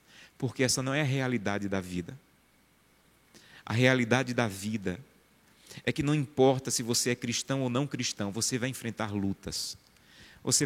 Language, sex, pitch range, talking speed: Portuguese, male, 110-145 Hz, 160 wpm